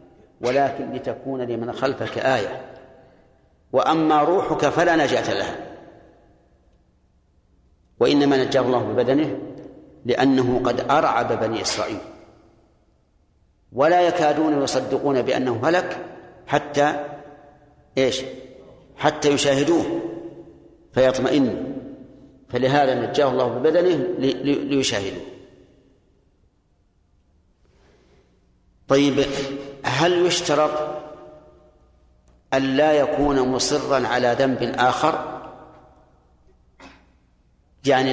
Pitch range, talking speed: 125-150 Hz, 70 wpm